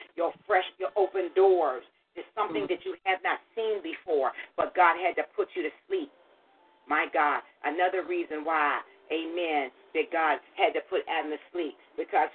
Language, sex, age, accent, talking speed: English, female, 40-59, American, 175 wpm